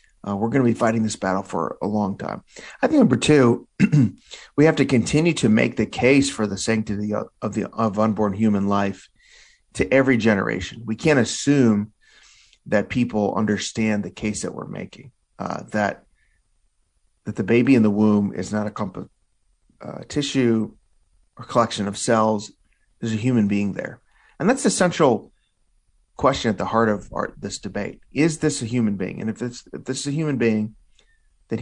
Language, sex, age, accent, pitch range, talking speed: English, male, 40-59, American, 105-130 Hz, 190 wpm